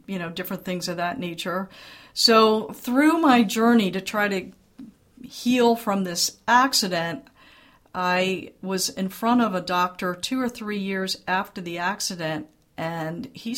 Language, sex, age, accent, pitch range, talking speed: English, female, 50-69, American, 175-220 Hz, 150 wpm